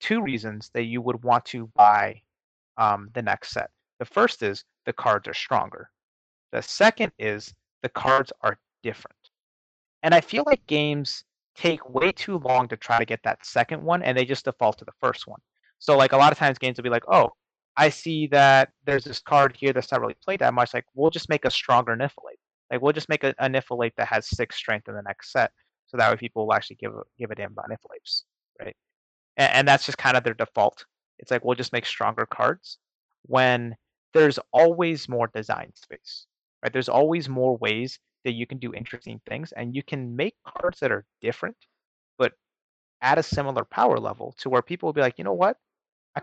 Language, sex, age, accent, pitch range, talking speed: English, male, 30-49, American, 120-150 Hz, 215 wpm